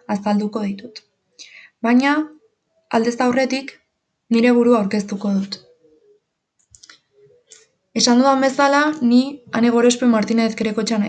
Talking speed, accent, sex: 80 wpm, Spanish, female